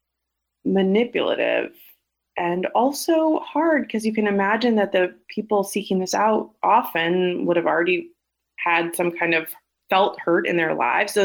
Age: 30-49